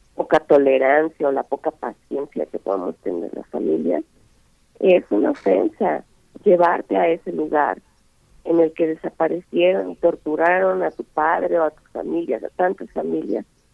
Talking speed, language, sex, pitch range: 150 wpm, Spanish, female, 170-200 Hz